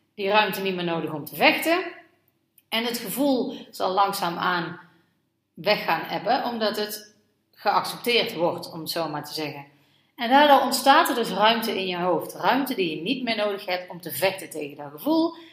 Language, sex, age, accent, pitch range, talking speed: Dutch, female, 40-59, Dutch, 175-285 Hz, 185 wpm